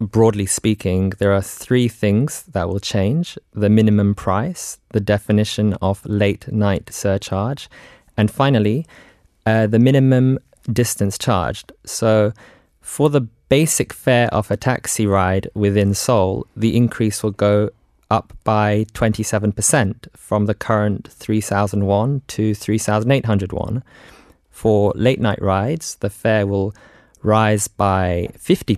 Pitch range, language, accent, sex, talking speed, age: 100-120 Hz, English, British, male, 125 wpm, 20-39